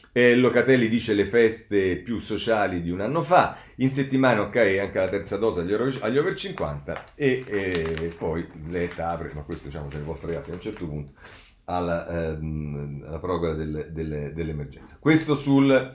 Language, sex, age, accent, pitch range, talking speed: Italian, male, 40-59, native, 90-145 Hz, 175 wpm